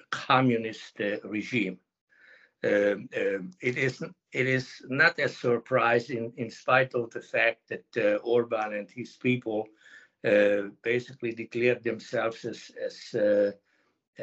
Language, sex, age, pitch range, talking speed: English, male, 60-79, 110-135 Hz, 130 wpm